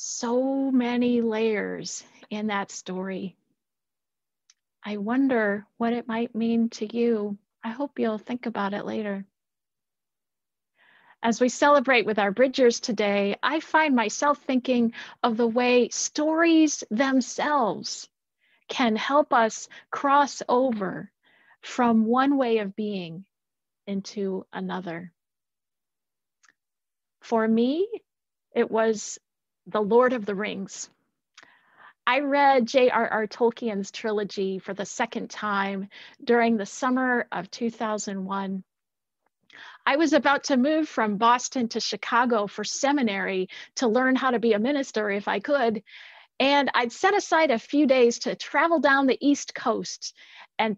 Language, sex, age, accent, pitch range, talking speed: English, female, 40-59, American, 210-265 Hz, 125 wpm